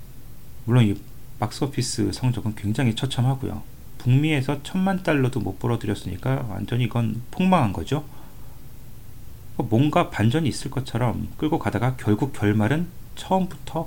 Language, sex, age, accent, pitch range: Korean, male, 40-59, native, 105-135 Hz